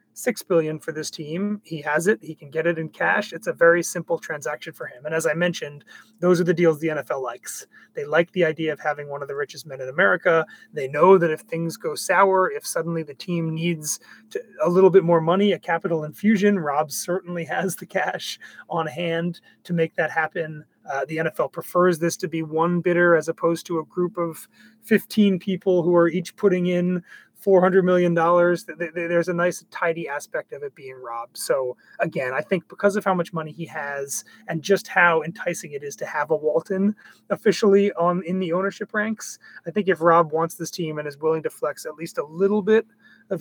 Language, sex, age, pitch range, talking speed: English, male, 30-49, 160-190 Hz, 210 wpm